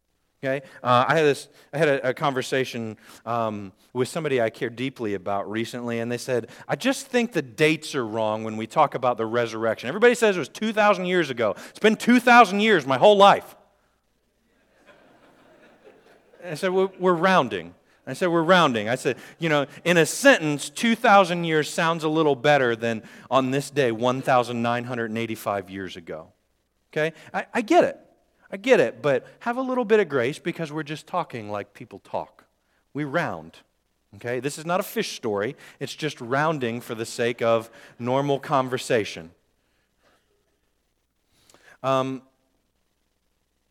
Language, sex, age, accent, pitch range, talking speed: English, male, 40-59, American, 105-155 Hz, 165 wpm